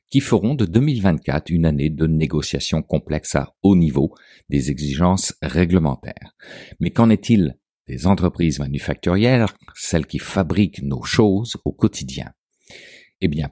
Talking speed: 135 wpm